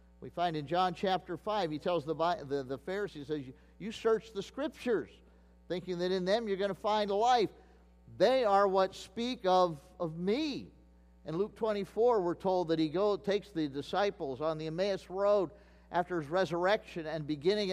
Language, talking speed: English, 185 wpm